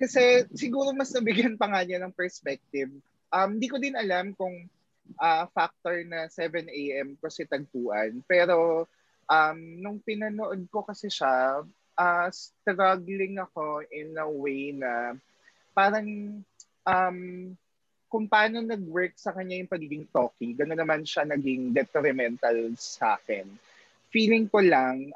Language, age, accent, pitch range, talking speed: English, 20-39, Filipino, 140-185 Hz, 130 wpm